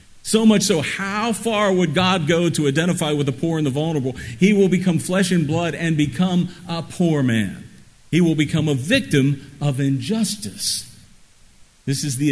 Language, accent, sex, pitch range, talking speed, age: English, American, male, 125-170 Hz, 180 wpm, 50-69